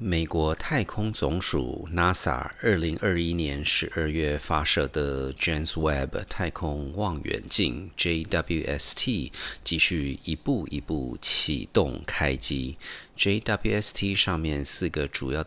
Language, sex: Chinese, male